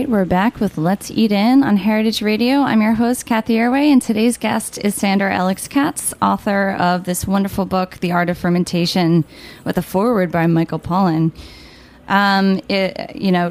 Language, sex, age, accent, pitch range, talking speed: English, female, 10-29, American, 180-225 Hz, 165 wpm